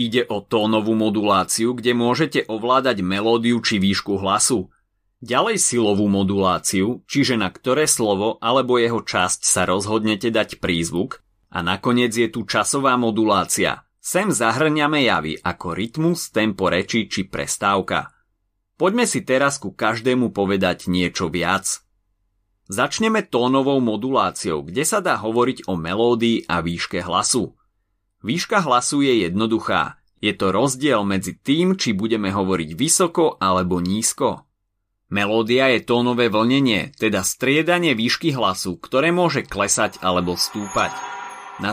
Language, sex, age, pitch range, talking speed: Slovak, male, 30-49, 95-125 Hz, 130 wpm